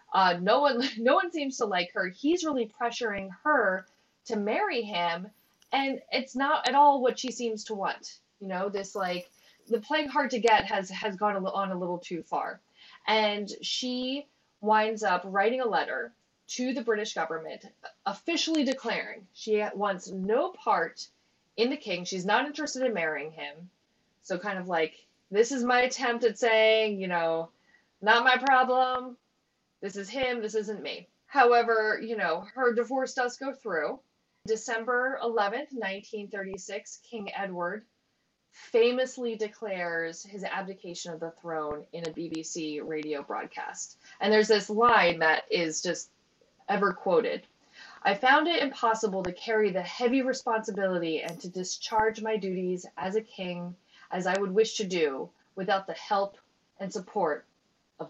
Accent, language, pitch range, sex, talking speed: American, English, 185-245 Hz, female, 160 wpm